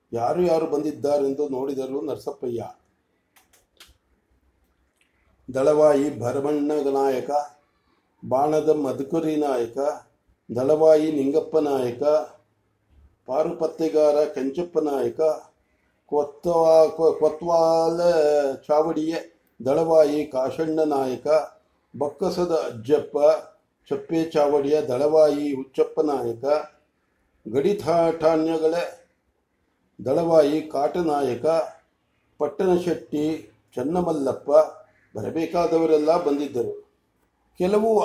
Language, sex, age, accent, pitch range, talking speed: English, male, 50-69, Indian, 140-165 Hz, 55 wpm